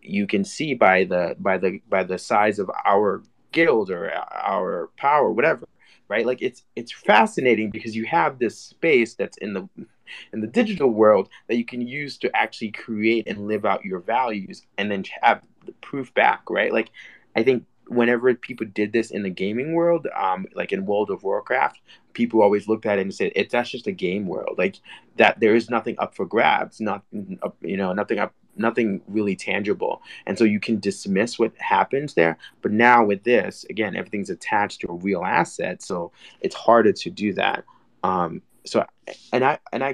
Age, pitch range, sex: 20-39, 105-130 Hz, male